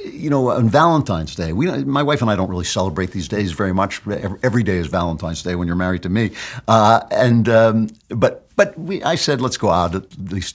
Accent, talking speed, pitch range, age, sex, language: American, 230 wpm, 95-125 Hz, 60-79, male, English